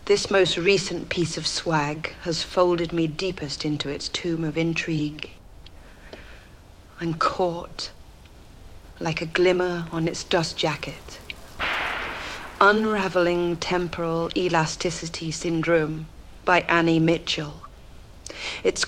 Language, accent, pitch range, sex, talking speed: English, British, 150-175 Hz, female, 100 wpm